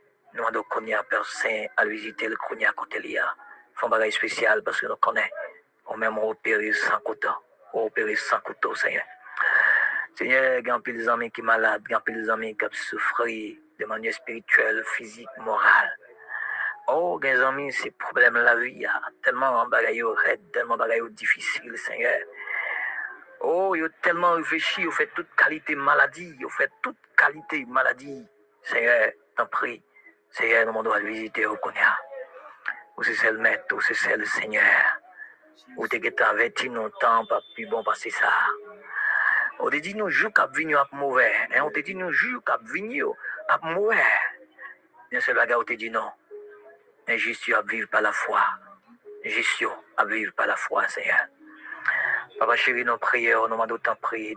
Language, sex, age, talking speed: English, male, 40-59, 190 wpm